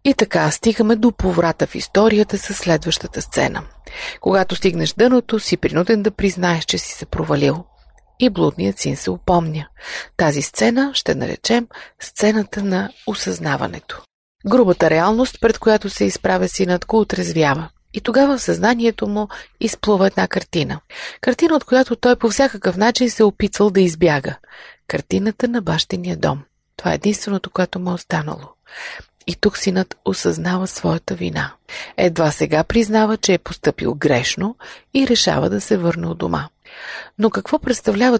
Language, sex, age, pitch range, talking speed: Bulgarian, female, 30-49, 170-230 Hz, 150 wpm